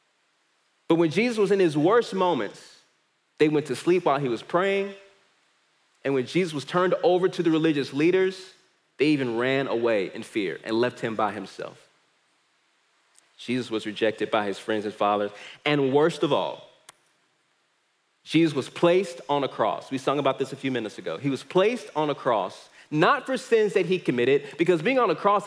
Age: 30-49